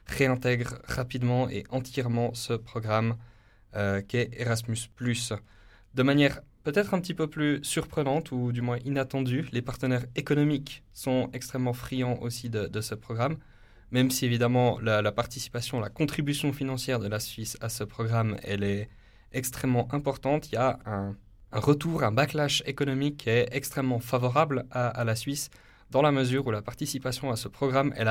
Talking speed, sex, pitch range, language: 165 wpm, male, 110-130 Hz, French